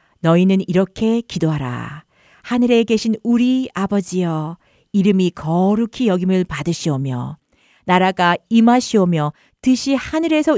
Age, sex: 50-69, female